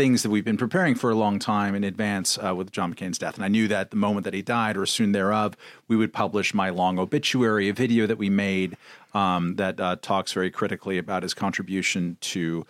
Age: 40-59